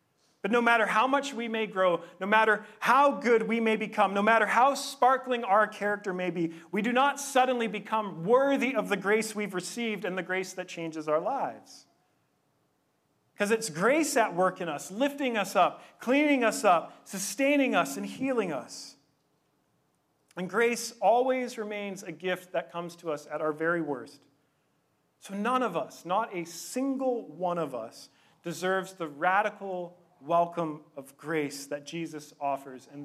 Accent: American